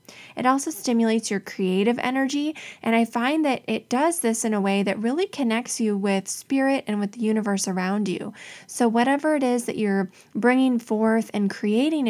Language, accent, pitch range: English, American, 200-250 Hz